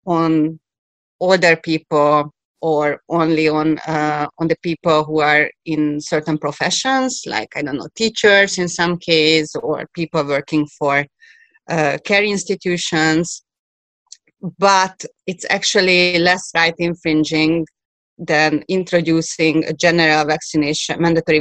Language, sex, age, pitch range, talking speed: English, female, 30-49, 160-190 Hz, 120 wpm